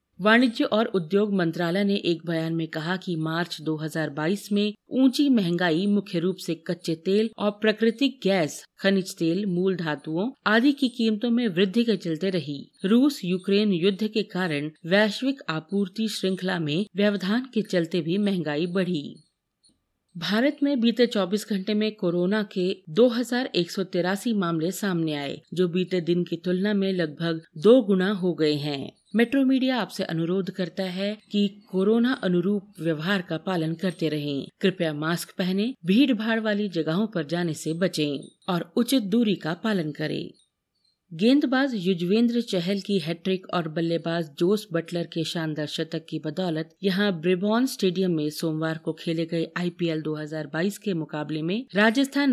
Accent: native